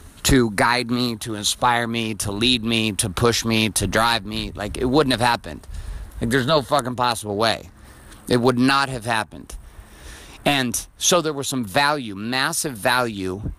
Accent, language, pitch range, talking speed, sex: American, English, 100-130 Hz, 170 wpm, male